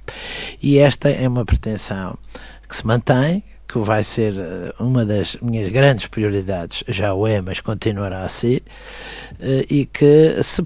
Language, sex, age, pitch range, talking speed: Portuguese, male, 60-79, 95-120 Hz, 145 wpm